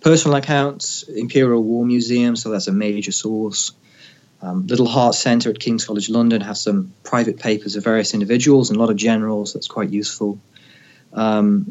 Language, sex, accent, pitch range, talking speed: English, male, British, 105-130 Hz, 175 wpm